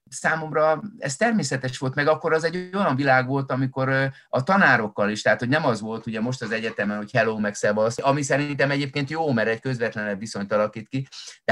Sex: male